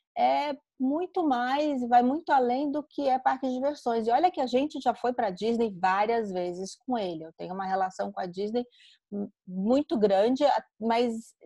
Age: 30-49